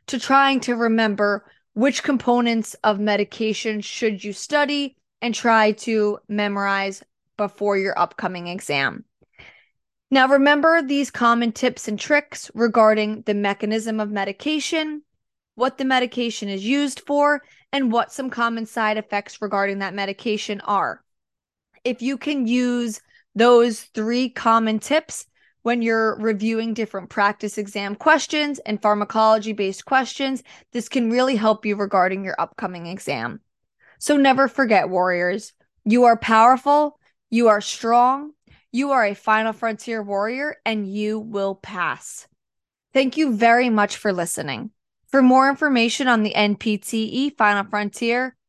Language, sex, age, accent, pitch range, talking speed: English, female, 20-39, American, 210-260 Hz, 135 wpm